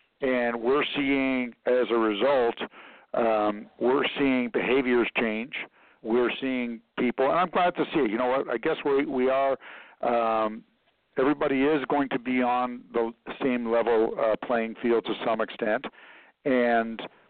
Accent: American